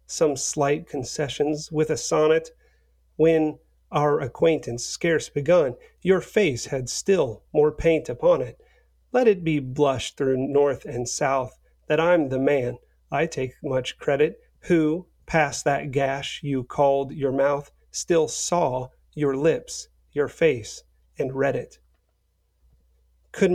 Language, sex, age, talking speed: English, male, 40-59, 135 wpm